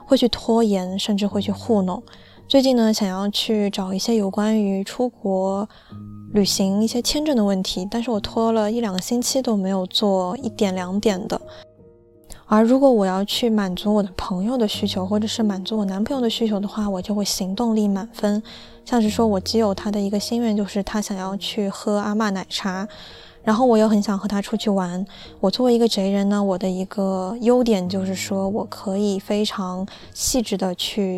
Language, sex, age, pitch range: Chinese, female, 20-39, 195-225 Hz